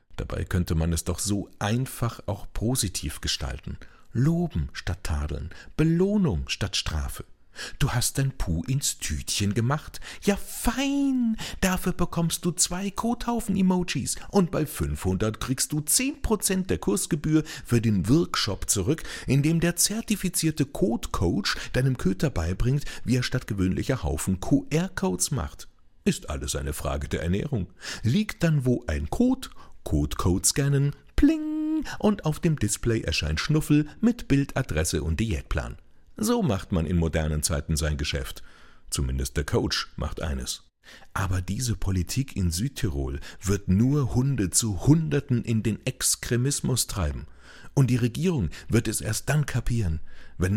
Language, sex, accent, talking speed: German, male, German, 140 wpm